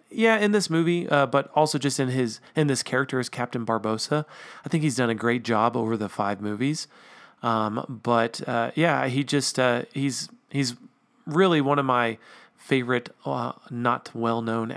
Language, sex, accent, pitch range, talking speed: English, male, American, 115-145 Hz, 185 wpm